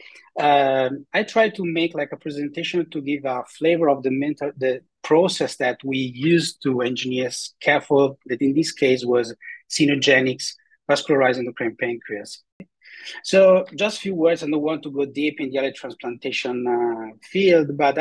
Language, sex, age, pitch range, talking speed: English, male, 30-49, 130-170 Hz, 175 wpm